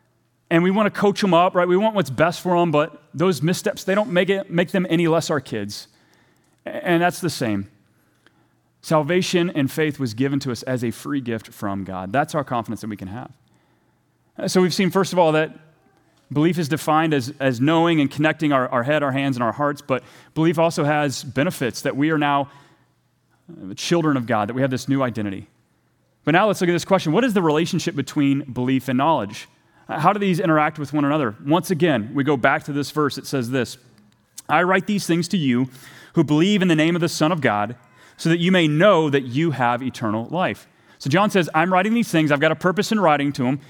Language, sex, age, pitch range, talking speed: English, male, 30-49, 135-180 Hz, 230 wpm